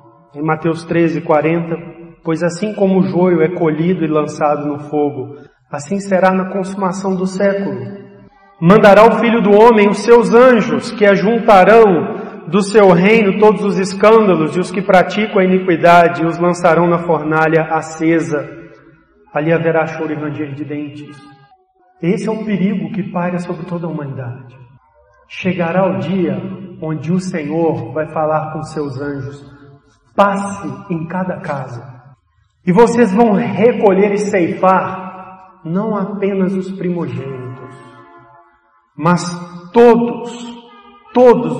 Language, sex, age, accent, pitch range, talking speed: Portuguese, male, 40-59, Brazilian, 155-195 Hz, 135 wpm